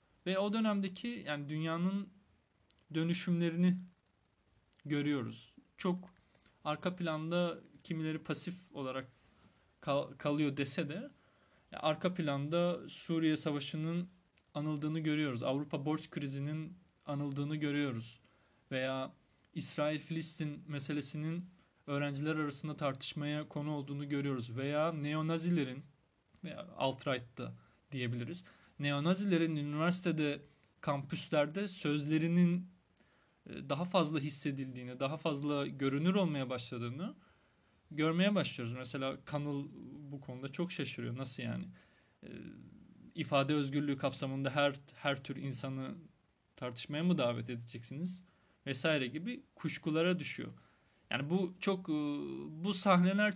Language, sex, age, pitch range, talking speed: Turkish, male, 30-49, 140-170 Hz, 95 wpm